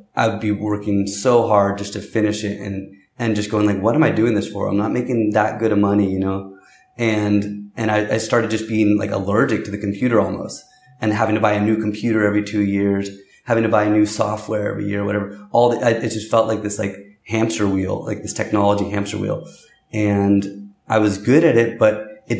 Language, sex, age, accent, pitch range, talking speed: English, male, 20-39, American, 100-110 Hz, 230 wpm